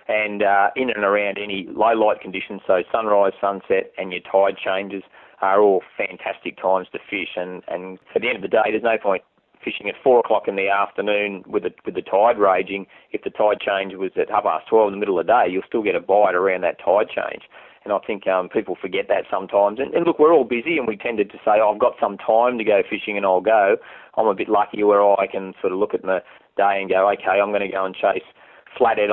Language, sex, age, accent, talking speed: English, male, 30-49, Australian, 250 wpm